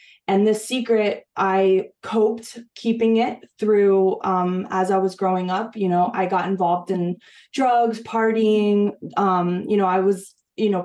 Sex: female